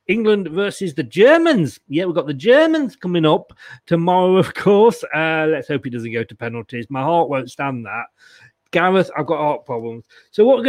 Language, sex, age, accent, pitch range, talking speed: English, male, 40-59, British, 160-205 Hz, 195 wpm